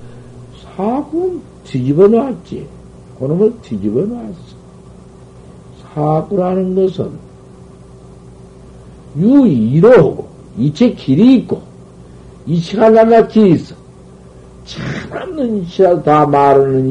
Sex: male